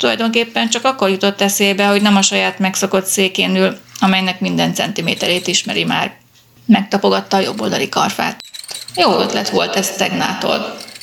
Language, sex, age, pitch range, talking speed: Hungarian, female, 30-49, 180-205 Hz, 140 wpm